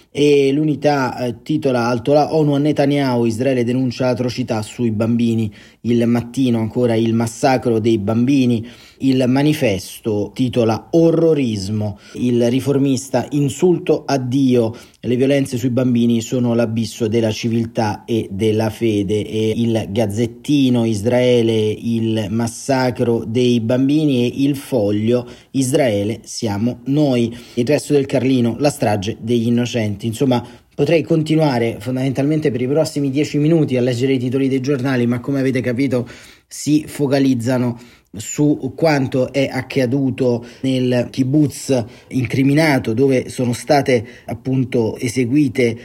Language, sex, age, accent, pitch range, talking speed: Italian, male, 30-49, native, 115-135 Hz, 125 wpm